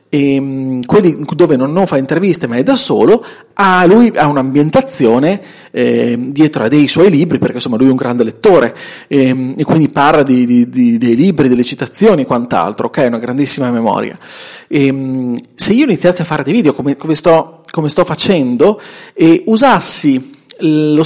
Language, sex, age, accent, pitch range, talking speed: Italian, male, 40-59, native, 145-215 Hz, 180 wpm